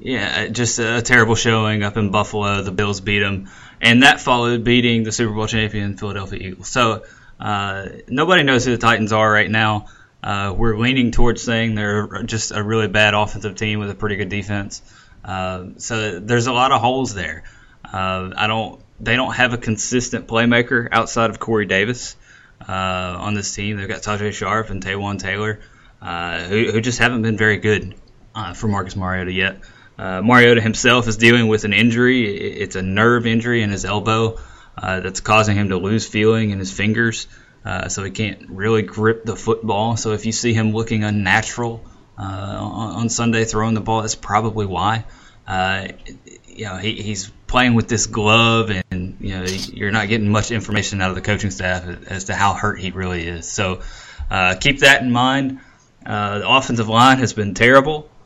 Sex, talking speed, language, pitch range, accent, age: male, 190 wpm, English, 100-115 Hz, American, 10-29